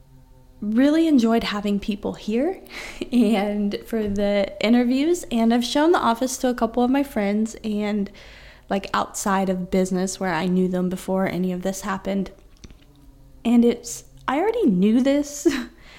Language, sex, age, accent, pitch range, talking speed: English, female, 20-39, American, 200-270 Hz, 150 wpm